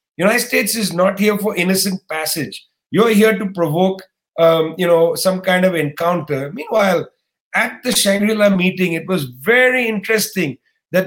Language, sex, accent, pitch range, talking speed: English, male, Indian, 185-215 Hz, 155 wpm